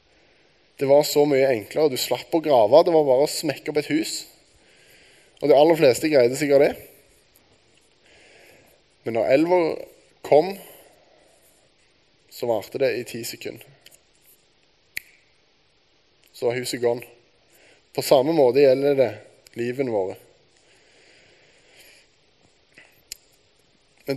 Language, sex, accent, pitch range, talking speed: Danish, male, Norwegian, 115-145 Hz, 115 wpm